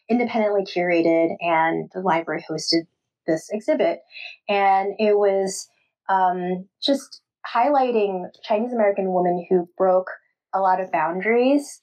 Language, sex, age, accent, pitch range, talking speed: English, female, 20-39, American, 165-205 Hz, 110 wpm